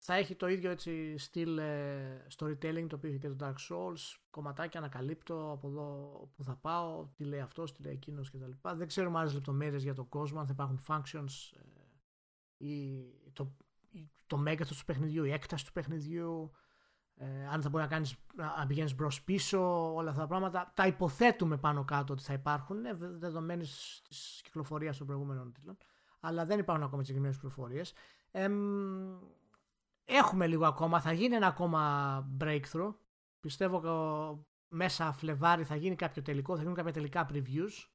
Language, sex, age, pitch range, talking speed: Greek, male, 30-49, 140-180 Hz, 160 wpm